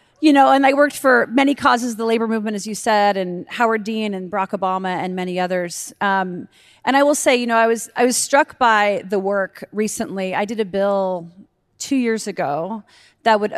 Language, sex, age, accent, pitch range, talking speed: English, female, 30-49, American, 180-225 Hz, 215 wpm